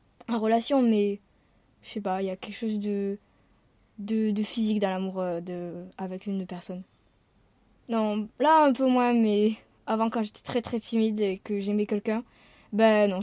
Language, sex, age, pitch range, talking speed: French, female, 20-39, 195-230 Hz, 175 wpm